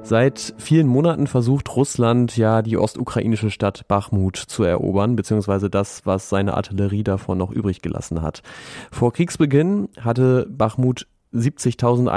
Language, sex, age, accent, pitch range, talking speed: German, male, 30-49, German, 105-125 Hz, 135 wpm